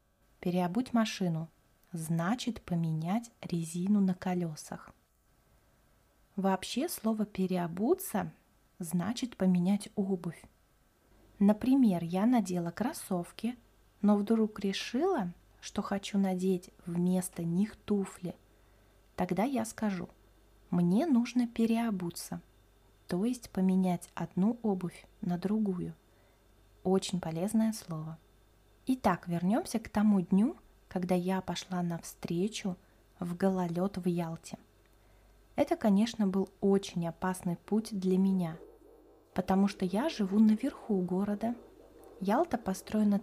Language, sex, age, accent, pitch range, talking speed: Russian, female, 20-39, native, 180-220 Hz, 100 wpm